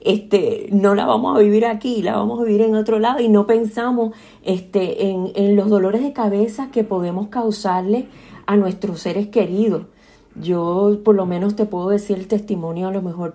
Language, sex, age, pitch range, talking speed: Spanish, female, 40-59, 180-215 Hz, 195 wpm